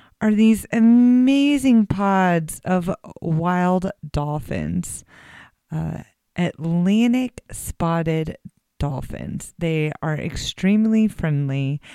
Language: English